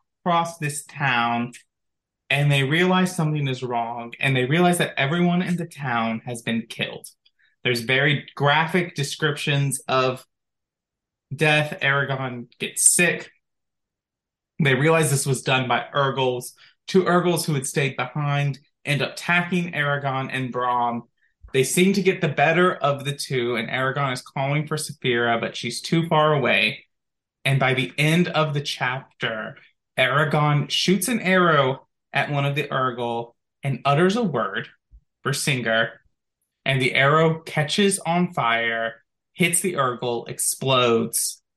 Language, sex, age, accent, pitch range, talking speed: English, male, 20-39, American, 125-160 Hz, 145 wpm